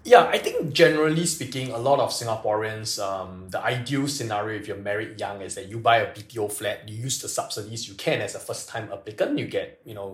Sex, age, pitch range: male, 20-39, 110-145 Hz